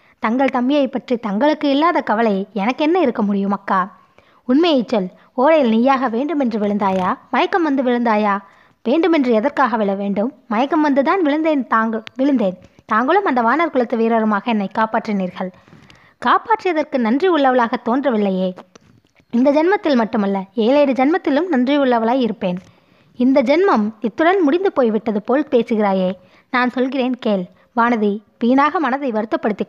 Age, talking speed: 20-39, 120 wpm